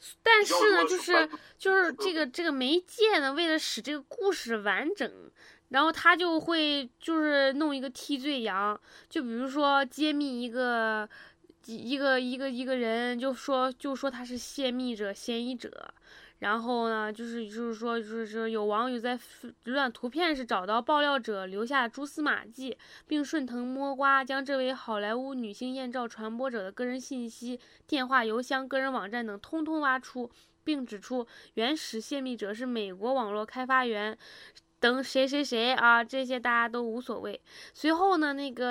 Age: 10-29